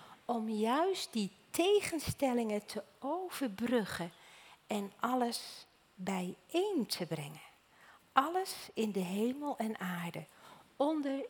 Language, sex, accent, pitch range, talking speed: Dutch, female, Dutch, 180-265 Hz, 95 wpm